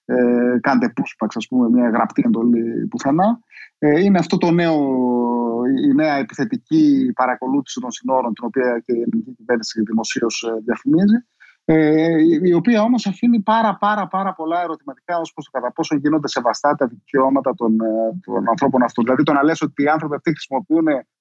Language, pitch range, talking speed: Greek, 130-175 Hz, 165 wpm